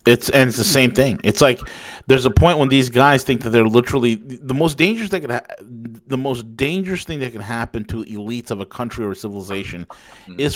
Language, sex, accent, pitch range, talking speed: English, male, American, 120-150 Hz, 235 wpm